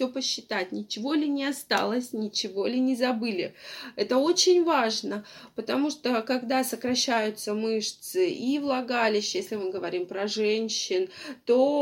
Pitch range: 205-270 Hz